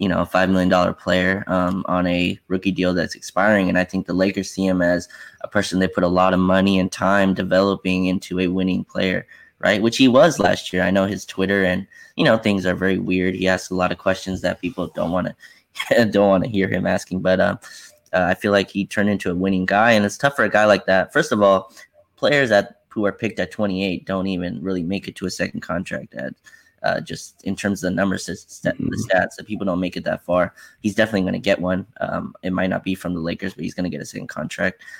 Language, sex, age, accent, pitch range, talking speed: English, male, 20-39, American, 90-100 Hz, 255 wpm